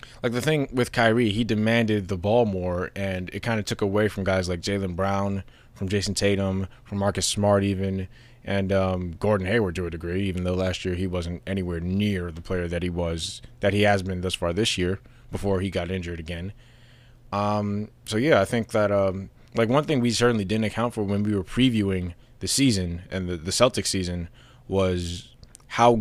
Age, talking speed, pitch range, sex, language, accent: 20-39, 205 wpm, 95-120 Hz, male, English, American